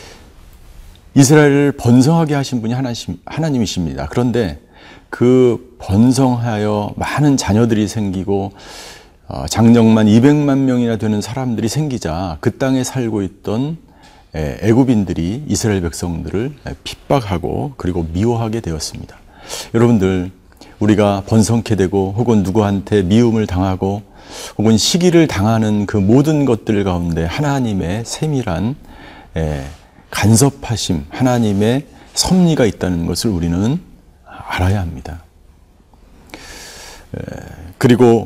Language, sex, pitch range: Korean, male, 90-125 Hz